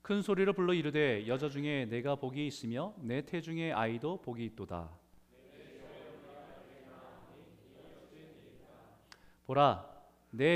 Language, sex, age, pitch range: Korean, male, 40-59, 100-150 Hz